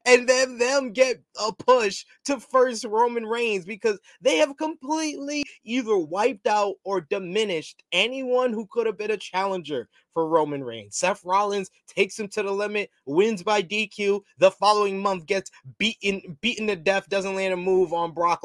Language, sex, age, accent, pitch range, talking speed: English, male, 20-39, American, 185-255 Hz, 170 wpm